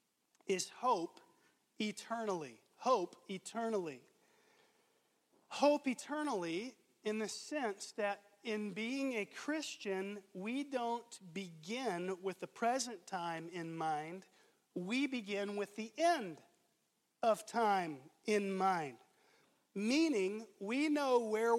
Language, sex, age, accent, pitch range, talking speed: English, male, 40-59, American, 200-265 Hz, 105 wpm